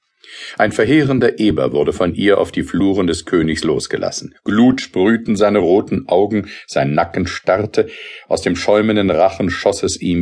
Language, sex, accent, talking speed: German, male, German, 160 wpm